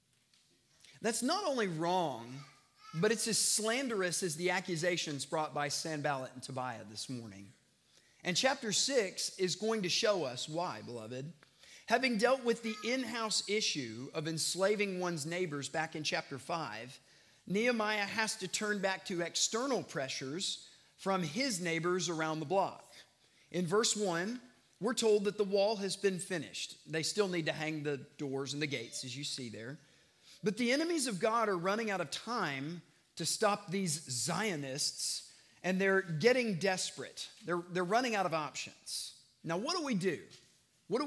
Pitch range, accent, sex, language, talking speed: 150-210 Hz, American, male, English, 165 wpm